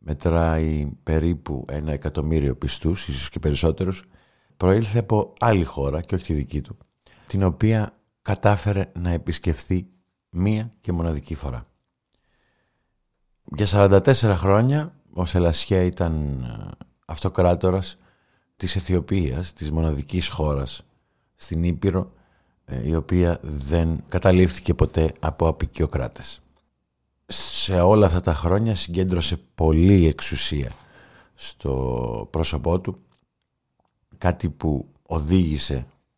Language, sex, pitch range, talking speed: Greek, male, 75-95 Hz, 100 wpm